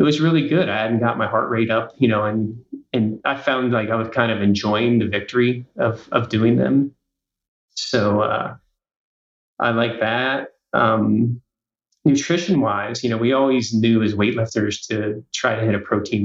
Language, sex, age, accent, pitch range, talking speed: English, male, 30-49, American, 100-120 Hz, 185 wpm